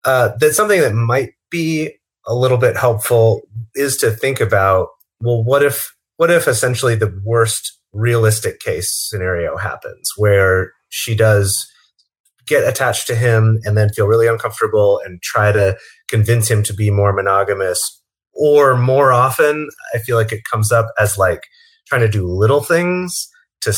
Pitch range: 105-135 Hz